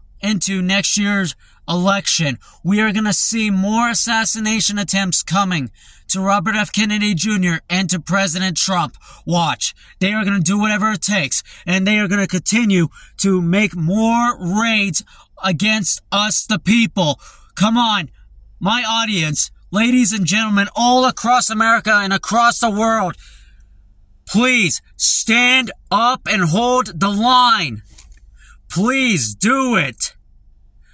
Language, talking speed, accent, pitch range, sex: English, 135 wpm, American, 170-225 Hz, male